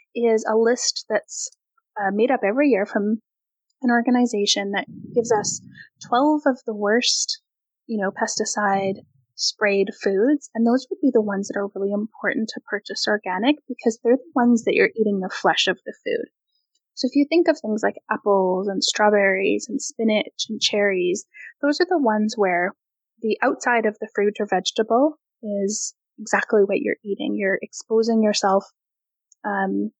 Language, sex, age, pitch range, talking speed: English, female, 10-29, 205-265 Hz, 165 wpm